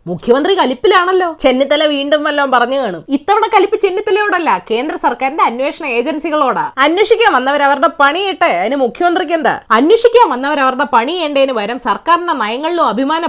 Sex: female